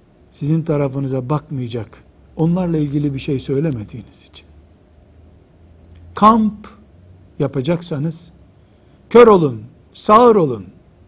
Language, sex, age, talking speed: Turkish, male, 60-79, 80 wpm